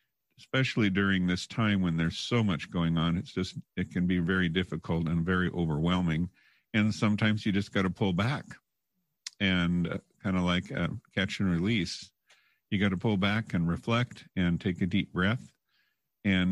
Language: English